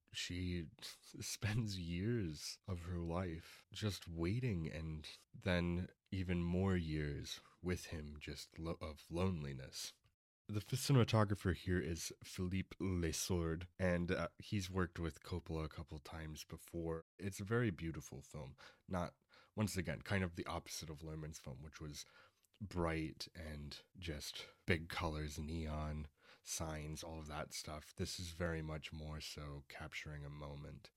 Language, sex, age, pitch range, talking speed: English, male, 30-49, 75-90 Hz, 140 wpm